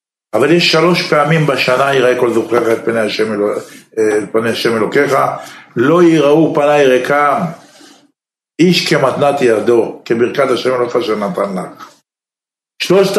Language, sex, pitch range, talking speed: Hebrew, male, 130-165 Hz, 115 wpm